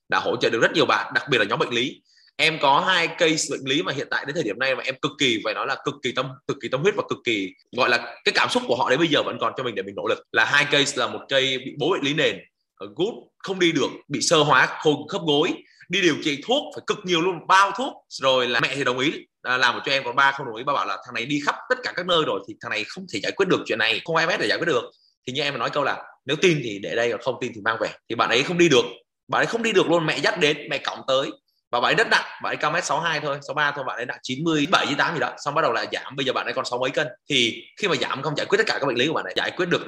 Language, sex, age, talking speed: Vietnamese, male, 20-39, 335 wpm